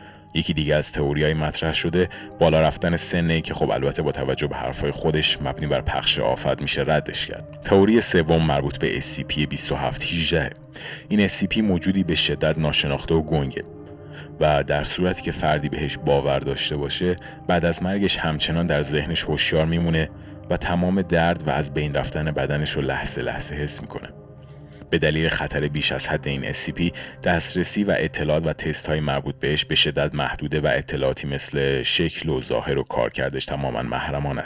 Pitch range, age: 75-85 Hz, 30-49